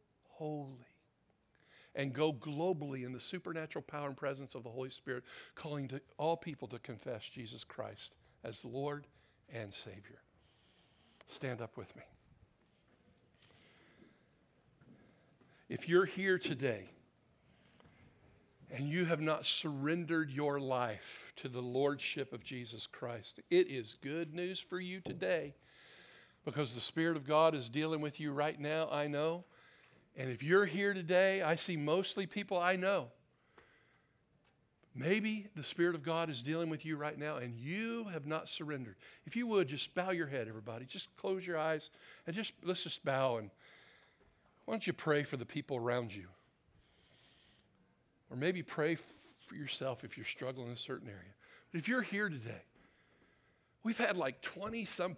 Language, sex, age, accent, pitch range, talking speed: English, male, 50-69, American, 130-175 Hz, 155 wpm